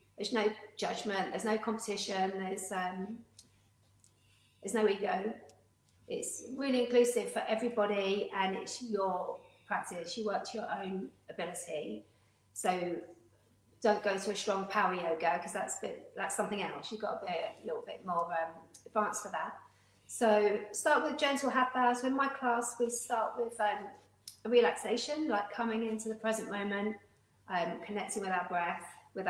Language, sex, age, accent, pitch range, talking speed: English, female, 40-59, British, 180-235 Hz, 165 wpm